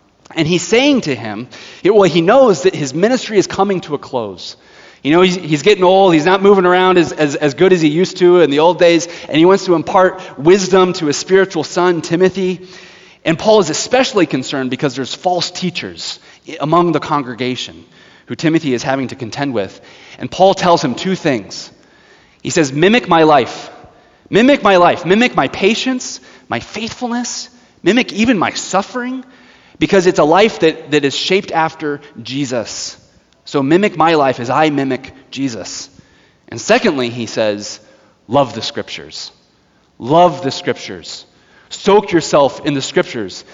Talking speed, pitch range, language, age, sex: 170 wpm, 150-190 Hz, English, 30-49, male